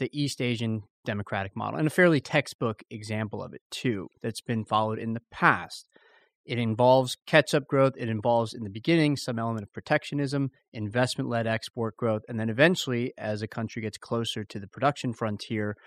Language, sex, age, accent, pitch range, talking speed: English, male, 30-49, American, 110-145 Hz, 180 wpm